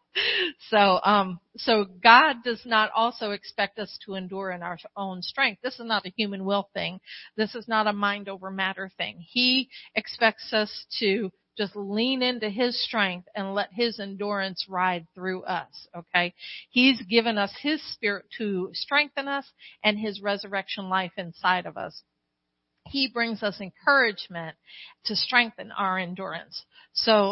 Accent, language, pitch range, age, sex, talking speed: American, English, 195-235 Hz, 50-69, female, 155 wpm